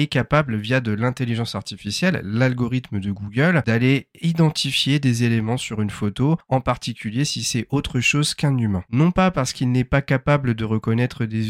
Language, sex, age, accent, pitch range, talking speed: French, male, 40-59, French, 110-140 Hz, 170 wpm